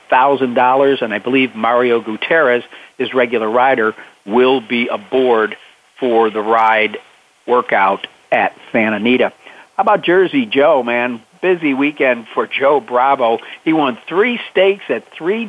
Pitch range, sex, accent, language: 125-145 Hz, male, American, English